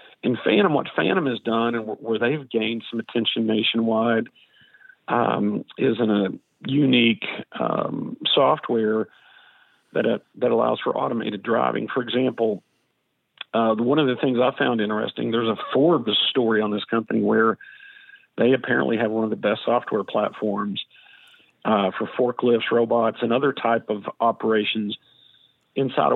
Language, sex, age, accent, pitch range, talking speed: English, male, 50-69, American, 110-125 Hz, 145 wpm